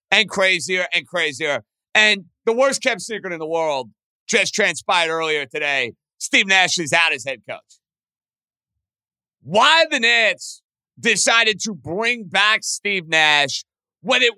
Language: English